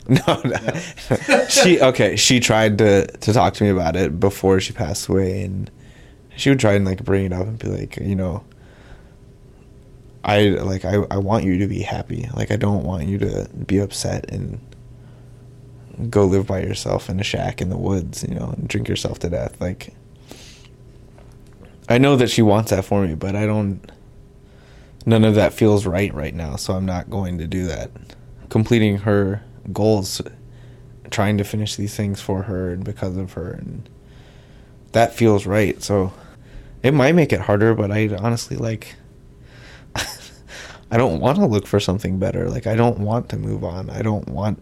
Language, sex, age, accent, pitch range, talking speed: English, male, 20-39, American, 100-125 Hz, 185 wpm